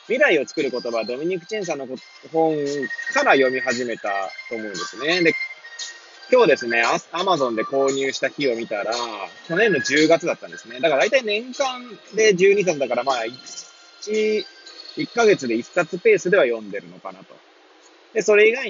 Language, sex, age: Japanese, male, 20-39